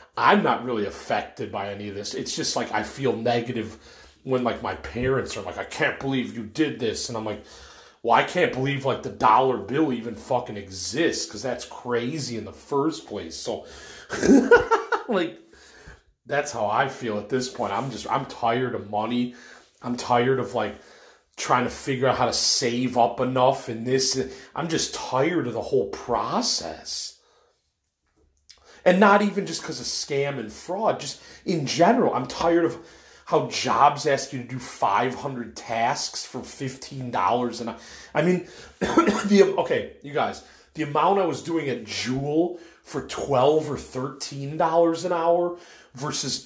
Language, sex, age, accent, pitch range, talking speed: English, male, 30-49, American, 120-165 Hz, 170 wpm